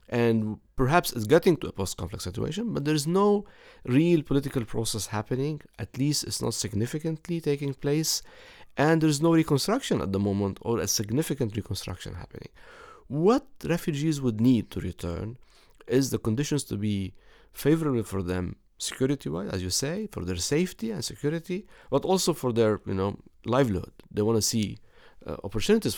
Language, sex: English, male